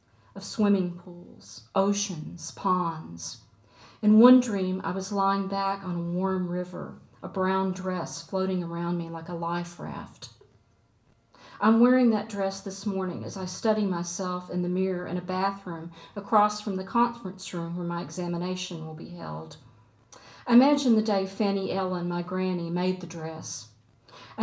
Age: 50-69